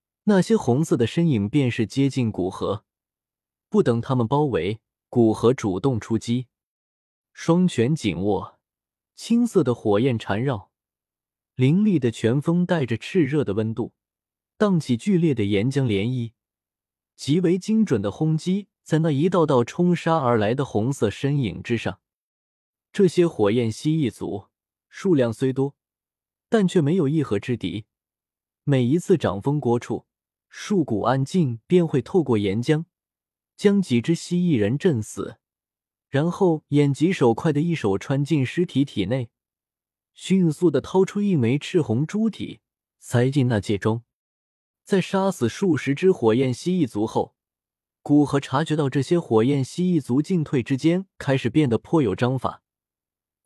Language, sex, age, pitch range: Chinese, male, 20-39, 115-170 Hz